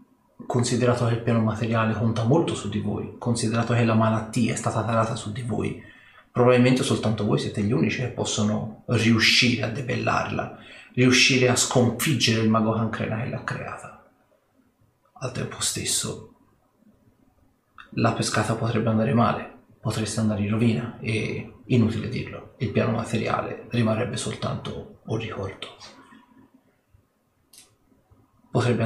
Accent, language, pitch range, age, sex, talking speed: native, Italian, 110-125 Hz, 30-49, male, 130 wpm